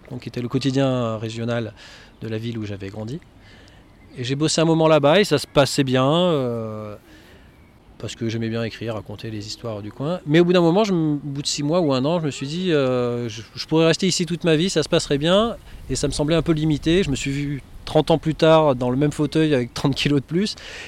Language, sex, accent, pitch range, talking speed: French, male, French, 110-145 Hz, 245 wpm